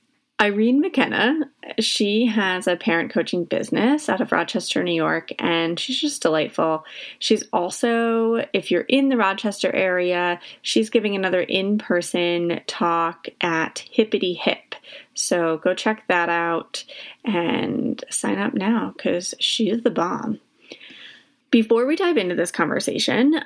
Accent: American